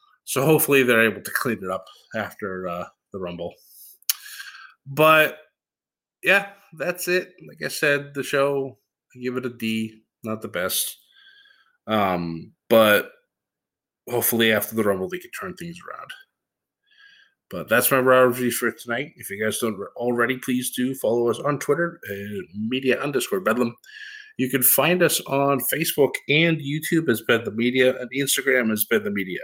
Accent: American